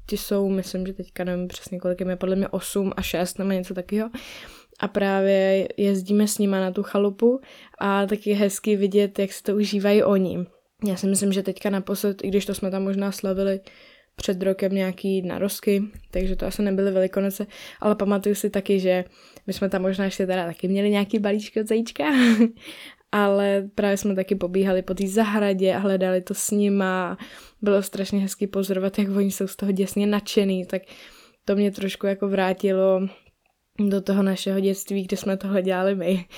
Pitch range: 190-210 Hz